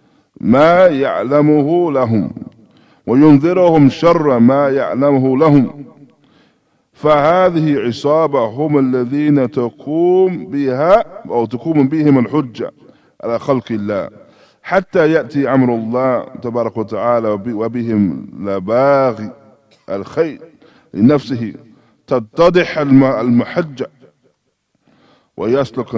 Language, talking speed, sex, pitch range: English, 80 wpm, male, 120-155 Hz